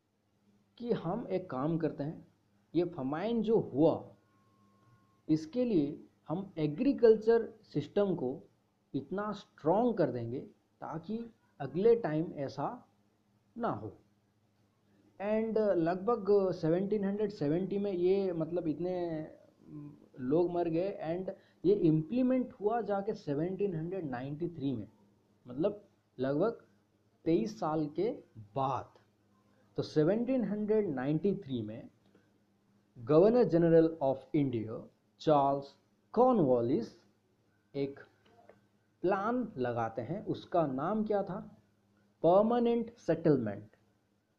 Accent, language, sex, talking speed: native, Hindi, male, 90 wpm